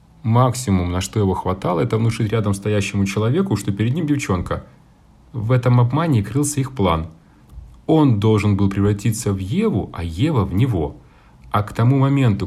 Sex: male